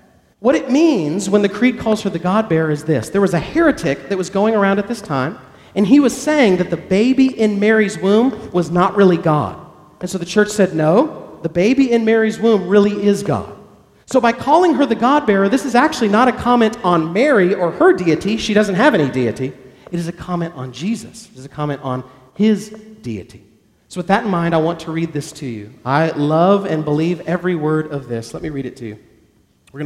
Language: English